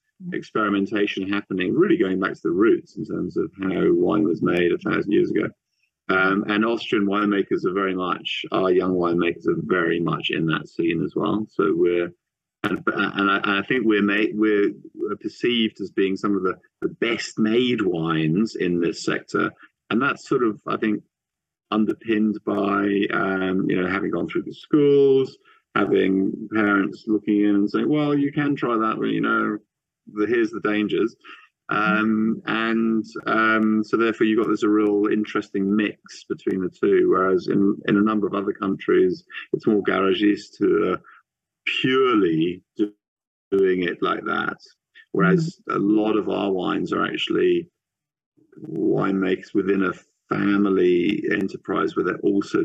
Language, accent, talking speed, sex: English, British, 165 wpm, male